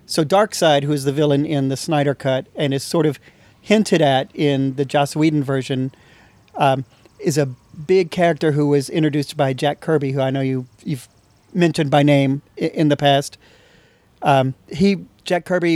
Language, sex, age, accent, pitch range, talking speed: English, male, 40-59, American, 135-160 Hz, 180 wpm